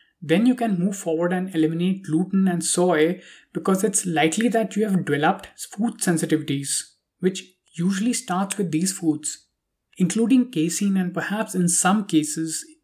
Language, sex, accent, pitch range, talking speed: English, male, Indian, 160-200 Hz, 150 wpm